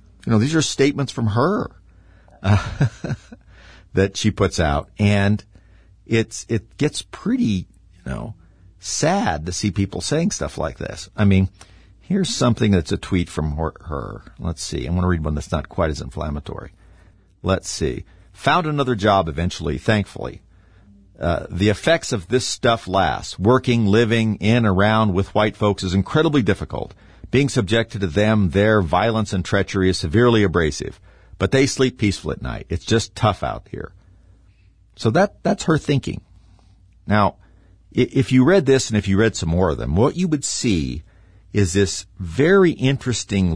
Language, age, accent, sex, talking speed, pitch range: English, 50-69, American, male, 165 wpm, 90-110 Hz